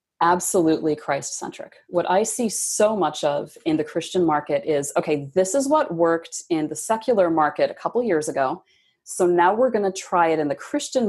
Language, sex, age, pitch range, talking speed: English, female, 30-49, 160-225 Hz, 195 wpm